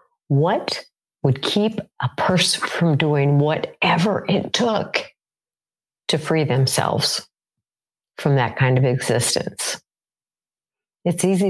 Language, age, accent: English, 50-69, American